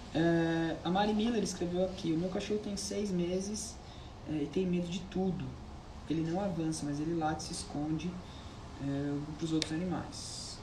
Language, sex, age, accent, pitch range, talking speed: Portuguese, male, 20-39, Brazilian, 155-190 Hz, 175 wpm